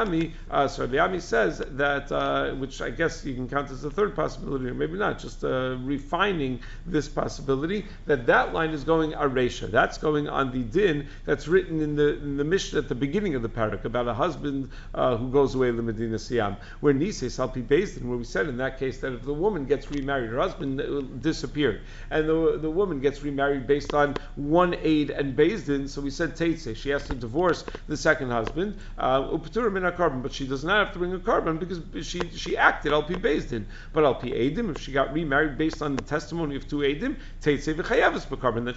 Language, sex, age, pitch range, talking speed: English, male, 50-69, 135-165 Hz, 215 wpm